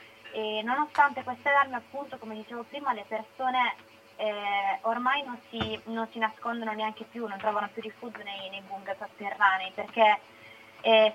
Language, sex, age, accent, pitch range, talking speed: Italian, female, 20-39, native, 195-235 Hz, 150 wpm